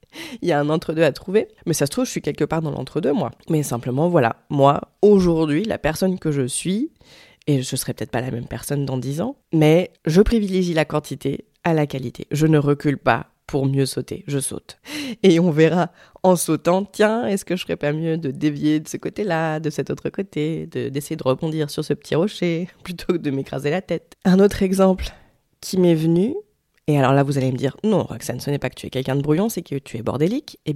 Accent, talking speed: French, 240 wpm